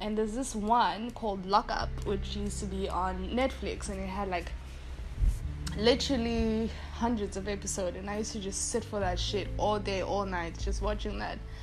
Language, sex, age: English, female, 10-29